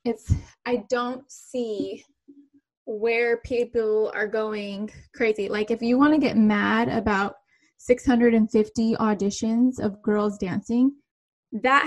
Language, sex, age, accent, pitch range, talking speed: English, female, 10-29, American, 215-245 Hz, 115 wpm